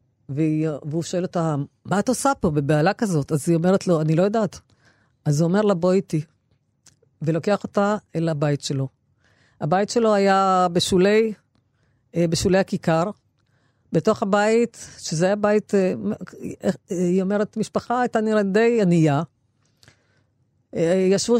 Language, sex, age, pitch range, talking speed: Hebrew, female, 50-69, 155-210 Hz, 130 wpm